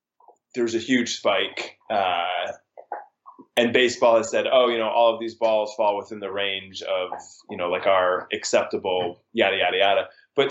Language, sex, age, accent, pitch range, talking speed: English, male, 20-39, American, 110-145 Hz, 170 wpm